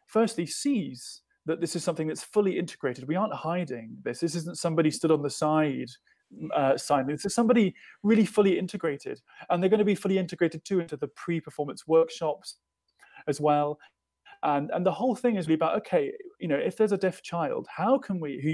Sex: male